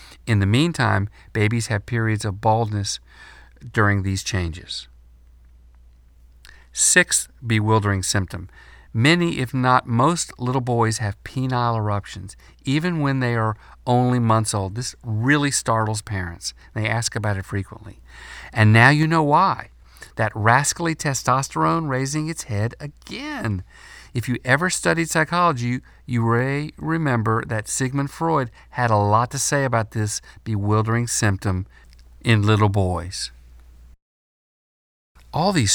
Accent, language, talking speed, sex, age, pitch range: American, English, 130 wpm, male, 50-69, 100-150 Hz